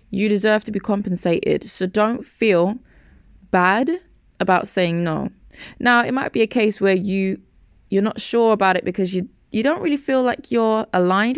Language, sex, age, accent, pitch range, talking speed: English, female, 20-39, British, 180-250 Hz, 180 wpm